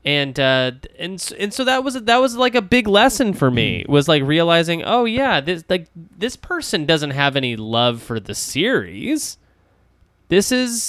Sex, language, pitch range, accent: male, English, 120-170 Hz, American